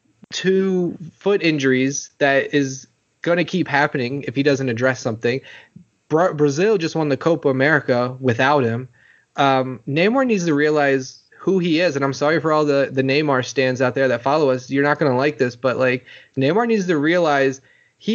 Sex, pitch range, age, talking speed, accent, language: male, 135-180 Hz, 20-39, 190 wpm, American, English